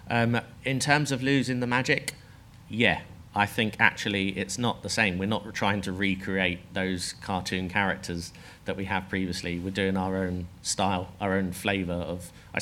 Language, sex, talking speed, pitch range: English, male, 175 wpm, 90-105 Hz